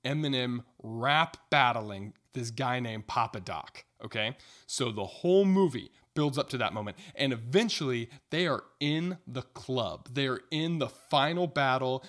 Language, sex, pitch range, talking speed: English, male, 115-145 Hz, 155 wpm